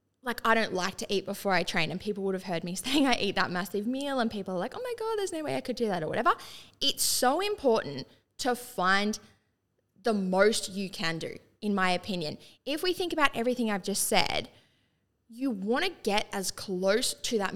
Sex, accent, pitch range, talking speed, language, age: female, Australian, 190-255 Hz, 225 wpm, English, 20-39